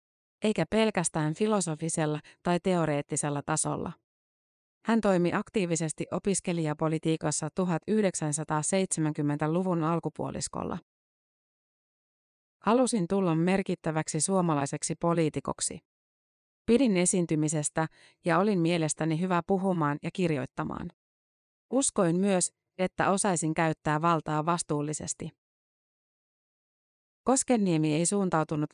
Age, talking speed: 30-49, 75 wpm